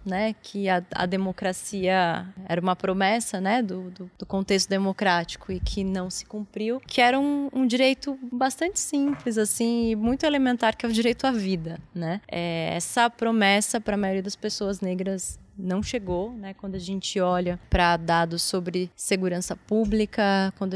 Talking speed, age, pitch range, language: 160 wpm, 20-39, 190-235 Hz, Portuguese